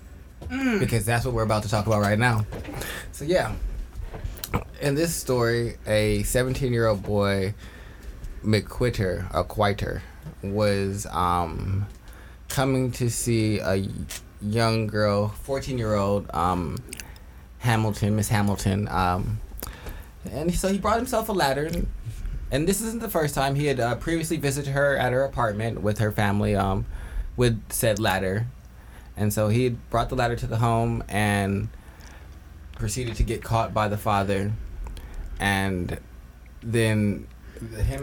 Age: 20-39